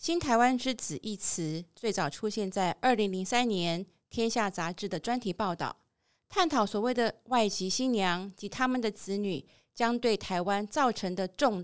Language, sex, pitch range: Chinese, female, 190-255 Hz